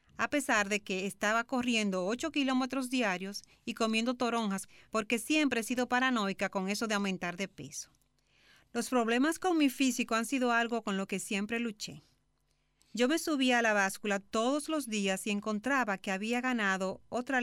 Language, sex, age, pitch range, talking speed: Spanish, female, 40-59, 185-240 Hz, 175 wpm